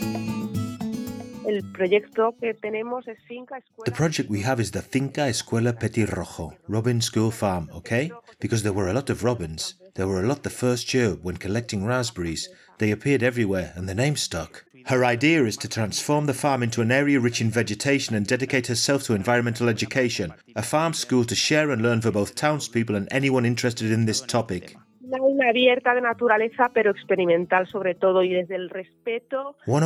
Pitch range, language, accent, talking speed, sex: 105-160 Hz, Spanish, British, 150 wpm, male